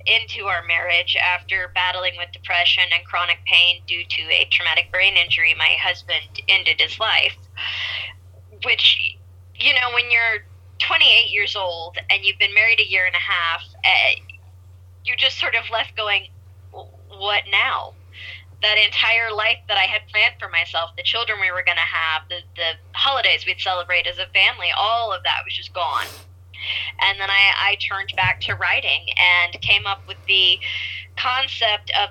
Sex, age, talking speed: female, 10-29, 170 wpm